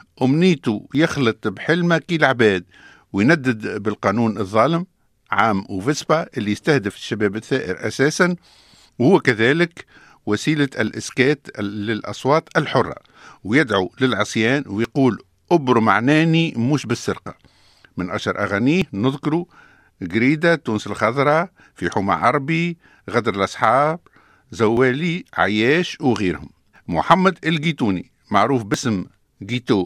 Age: 50-69